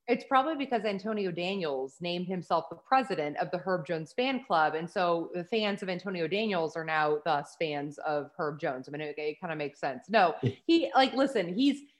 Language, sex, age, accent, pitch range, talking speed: English, female, 20-39, American, 165-210 Hz, 205 wpm